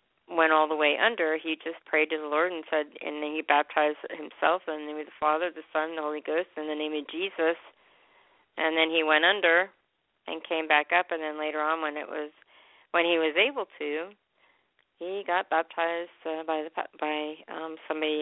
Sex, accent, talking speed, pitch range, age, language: female, American, 210 wpm, 150-175 Hz, 40-59, English